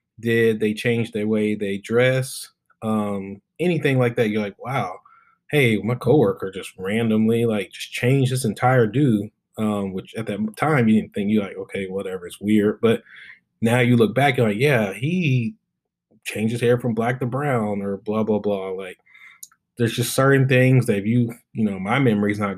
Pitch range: 110-130 Hz